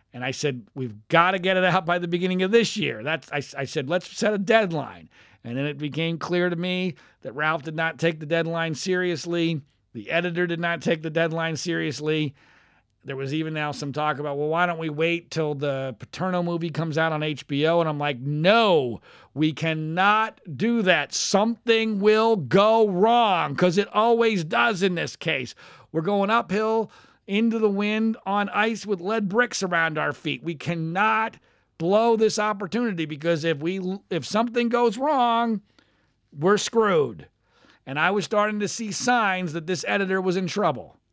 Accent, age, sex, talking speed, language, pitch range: American, 40-59, male, 185 wpm, English, 150-200 Hz